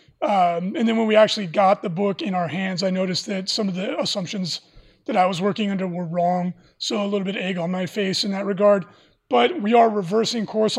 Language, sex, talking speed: English, male, 240 wpm